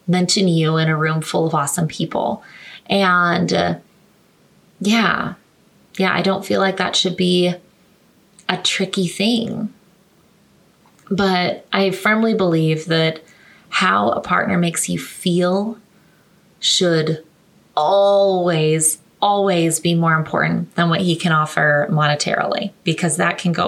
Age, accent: 20-39, American